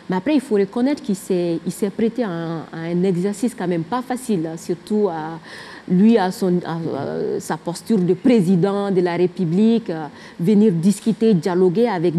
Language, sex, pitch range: French, female, 180-240 Hz